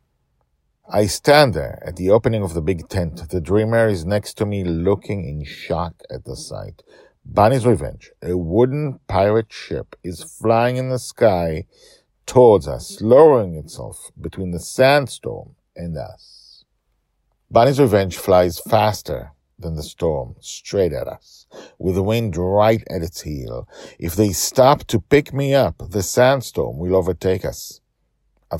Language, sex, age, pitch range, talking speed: English, male, 50-69, 80-110 Hz, 150 wpm